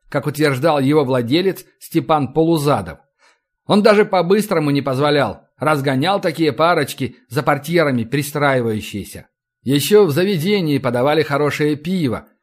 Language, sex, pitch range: Russian, male, 135-175 Hz